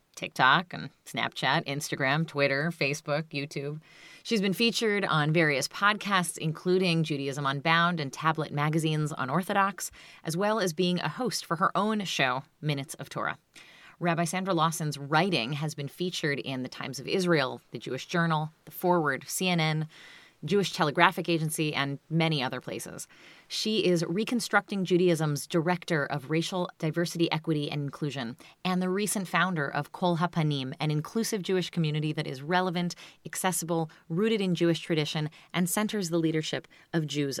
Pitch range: 150-185 Hz